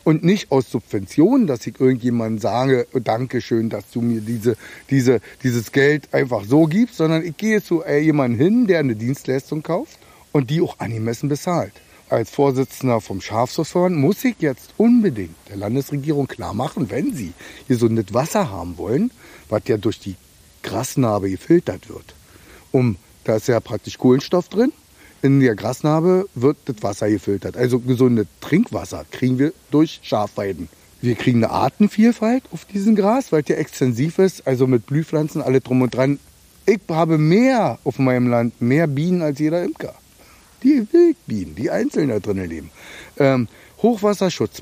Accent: German